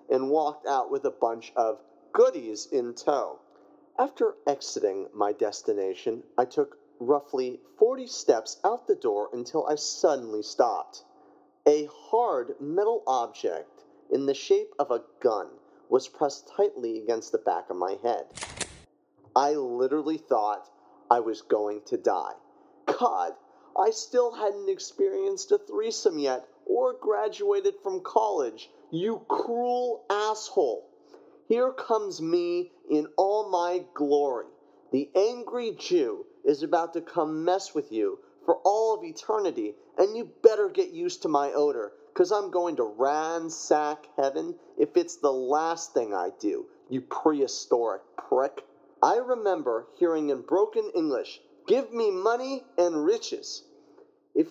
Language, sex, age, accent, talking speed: English, male, 40-59, American, 140 wpm